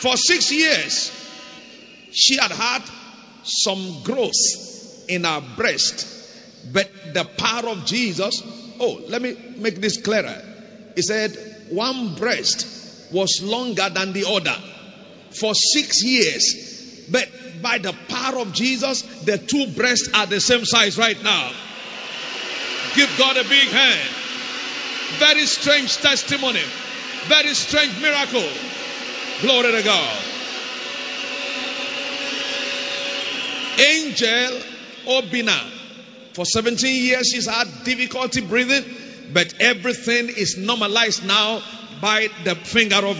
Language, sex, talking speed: English, male, 115 wpm